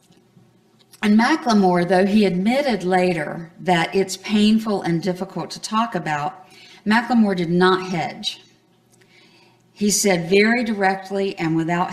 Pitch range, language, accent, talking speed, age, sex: 185-205 Hz, English, American, 120 wpm, 50-69, female